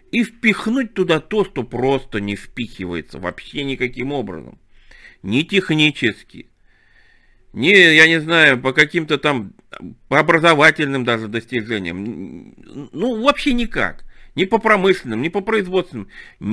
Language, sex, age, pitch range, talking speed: Russian, male, 50-69, 95-160 Hz, 115 wpm